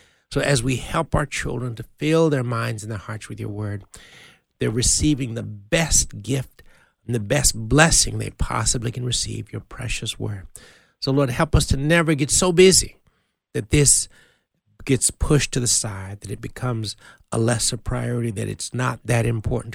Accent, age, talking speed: American, 60-79, 180 wpm